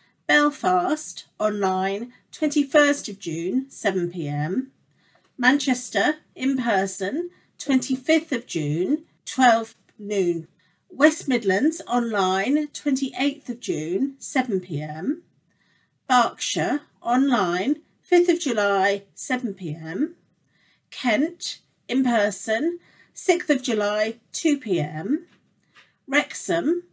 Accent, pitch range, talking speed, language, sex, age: British, 190-290 Hz, 85 wpm, English, female, 40-59